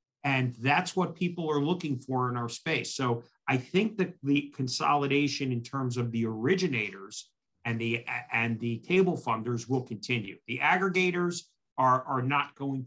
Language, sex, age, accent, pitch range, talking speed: English, male, 50-69, American, 120-160 Hz, 165 wpm